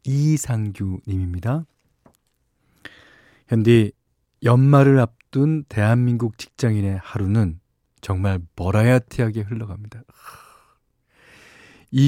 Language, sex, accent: Korean, male, native